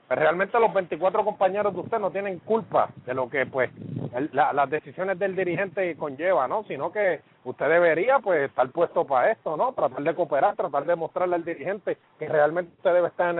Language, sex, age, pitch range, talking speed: English, male, 30-49, 155-200 Hz, 205 wpm